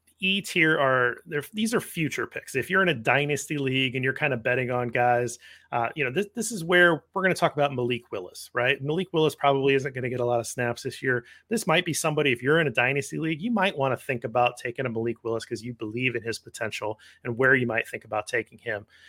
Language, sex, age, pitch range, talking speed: English, male, 30-49, 120-150 Hz, 260 wpm